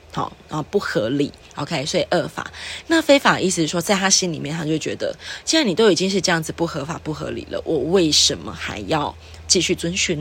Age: 20-39